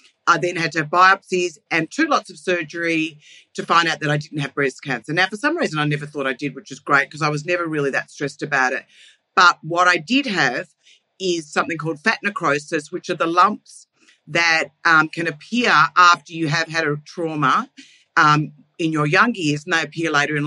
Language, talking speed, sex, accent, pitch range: English, 220 wpm, female, Australian, 150-195 Hz